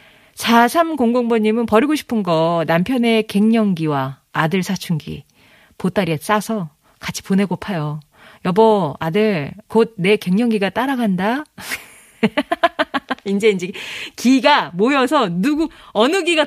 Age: 40-59